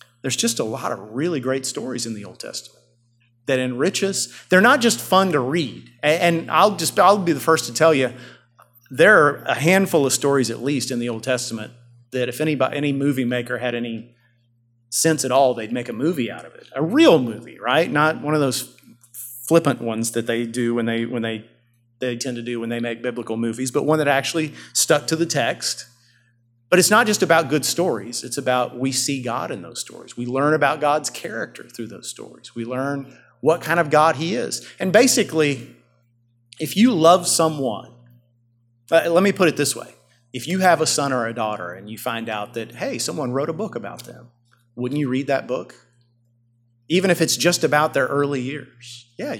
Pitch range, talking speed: 120-155 Hz, 210 wpm